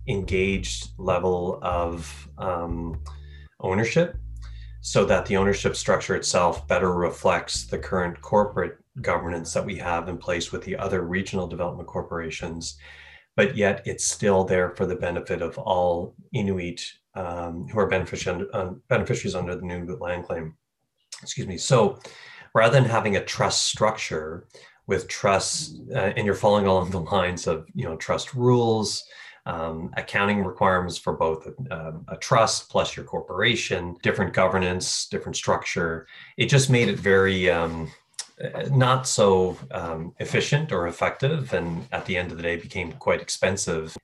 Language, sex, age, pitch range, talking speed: English, male, 30-49, 85-105 Hz, 150 wpm